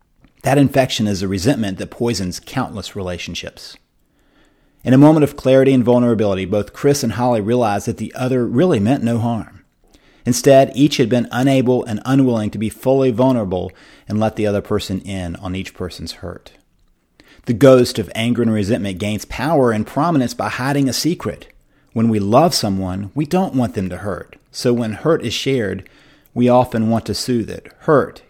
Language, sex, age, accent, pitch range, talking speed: English, male, 30-49, American, 100-125 Hz, 180 wpm